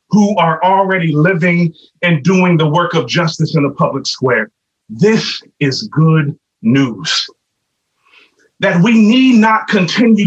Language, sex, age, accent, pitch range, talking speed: English, male, 30-49, American, 175-230 Hz, 135 wpm